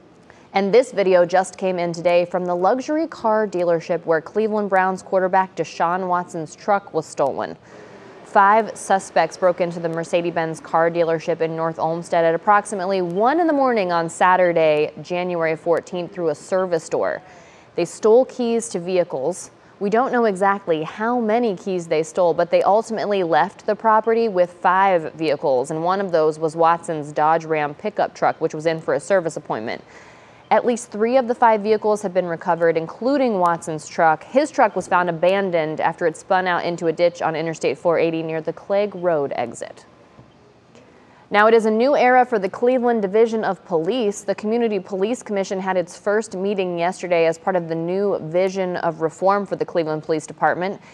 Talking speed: 180 wpm